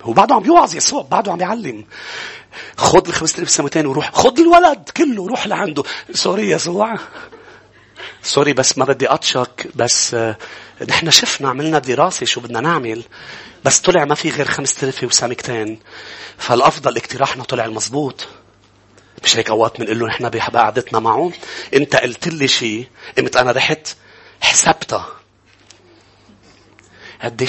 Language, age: English, 30-49